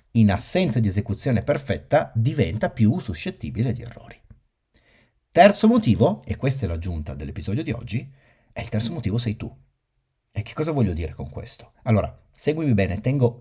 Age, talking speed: 40-59, 160 wpm